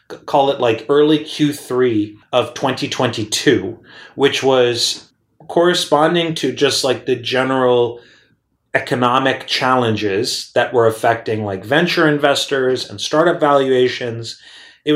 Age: 30-49